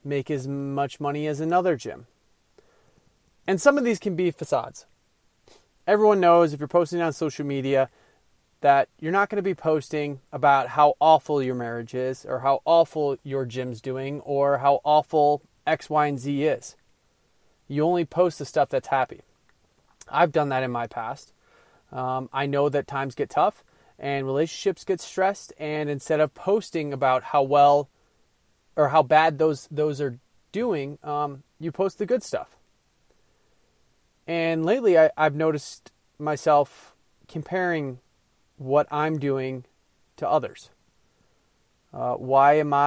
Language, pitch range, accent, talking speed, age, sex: English, 135-160 Hz, American, 150 wpm, 30-49, male